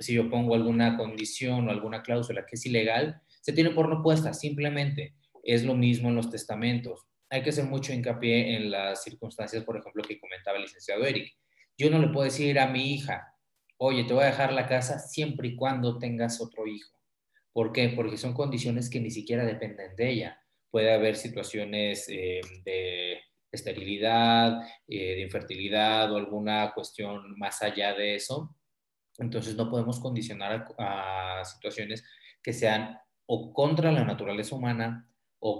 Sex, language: male, Spanish